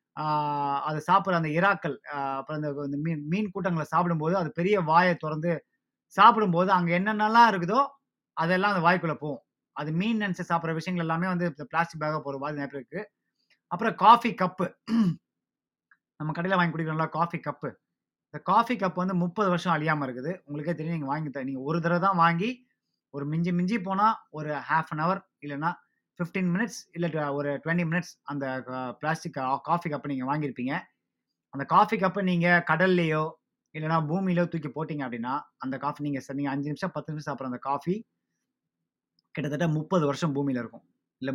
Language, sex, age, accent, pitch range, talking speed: Tamil, male, 30-49, native, 145-180 Hz, 155 wpm